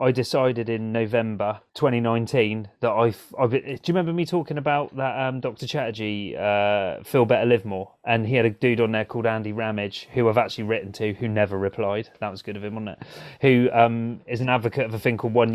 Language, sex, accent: English, male, British